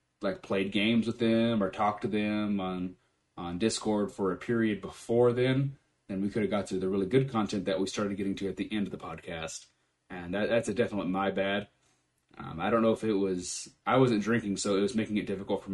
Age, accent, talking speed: 30-49, American, 235 wpm